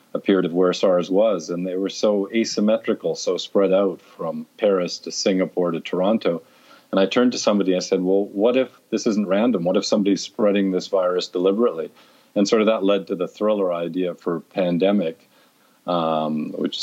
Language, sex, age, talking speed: English, male, 40-59, 190 wpm